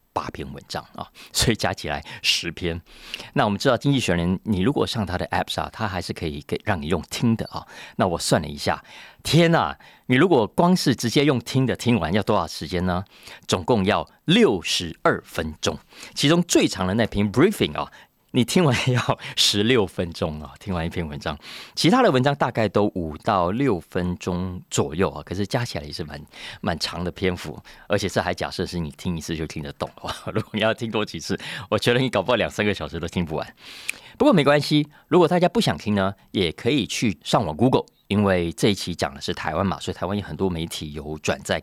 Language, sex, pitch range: Chinese, male, 85-120 Hz